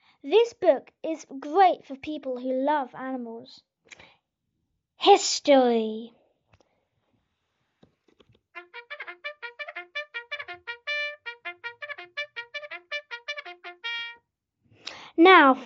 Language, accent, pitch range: English, British, 275-365 Hz